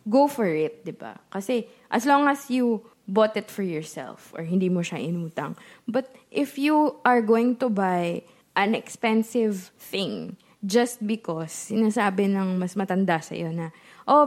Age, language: 20-39, English